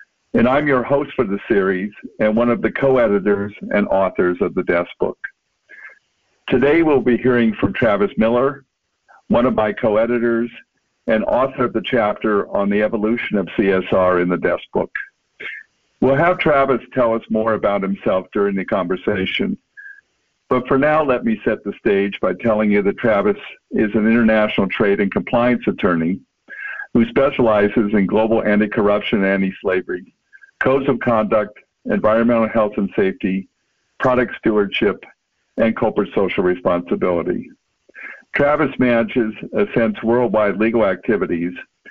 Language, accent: English, American